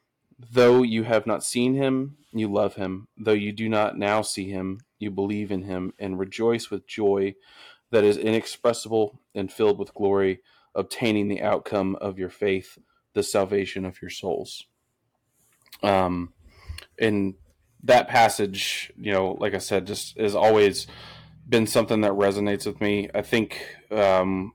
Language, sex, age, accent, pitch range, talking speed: English, male, 30-49, American, 95-110 Hz, 155 wpm